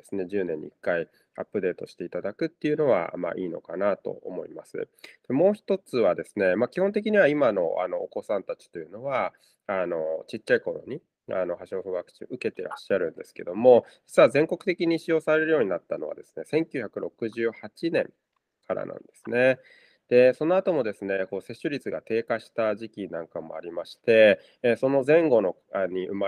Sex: male